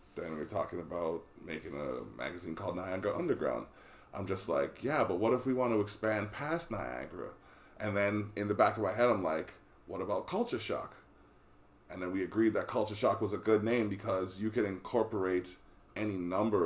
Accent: American